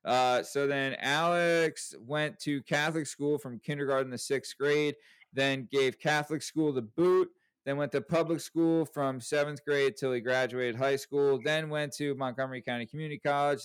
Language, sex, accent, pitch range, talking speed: English, male, American, 130-160 Hz, 170 wpm